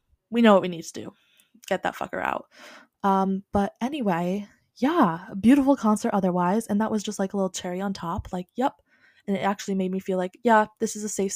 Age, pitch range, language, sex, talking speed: 20-39, 185-225 Hz, English, female, 225 wpm